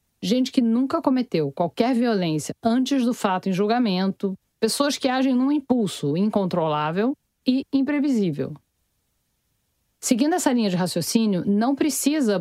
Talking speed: 125 wpm